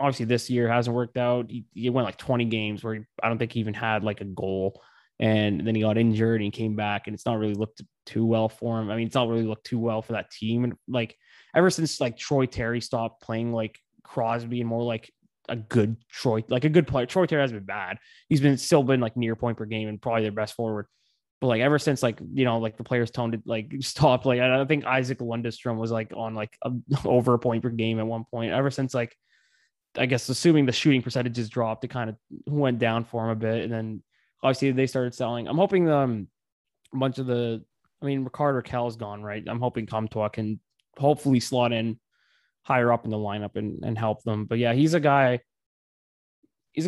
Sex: male